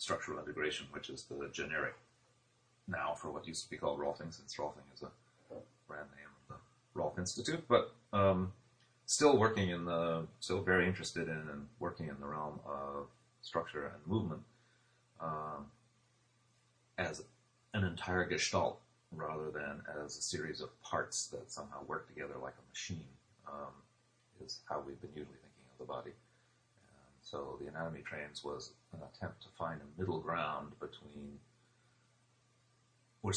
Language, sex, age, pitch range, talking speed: English, male, 30-49, 75-115 Hz, 155 wpm